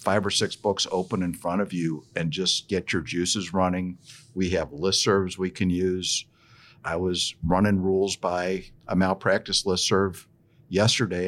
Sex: male